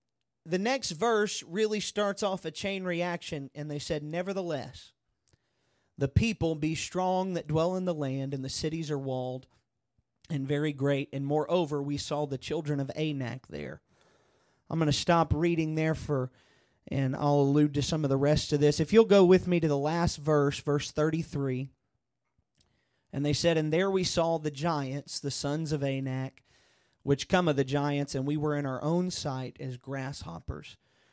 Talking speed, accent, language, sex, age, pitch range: 180 wpm, American, English, male, 30-49, 140-170 Hz